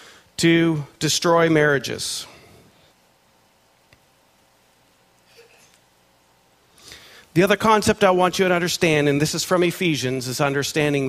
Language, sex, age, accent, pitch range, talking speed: English, male, 40-59, American, 135-195 Hz, 95 wpm